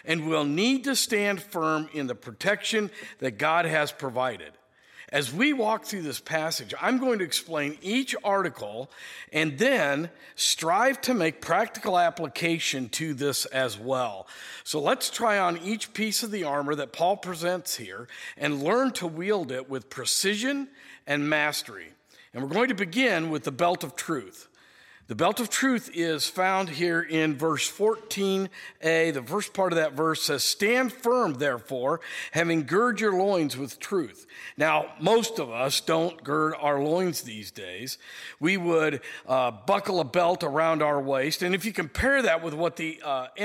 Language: English